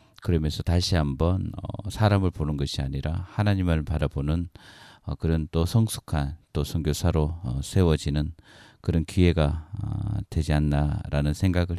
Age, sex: 40-59, male